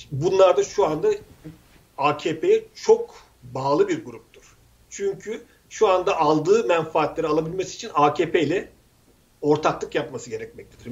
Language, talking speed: Turkish, 115 wpm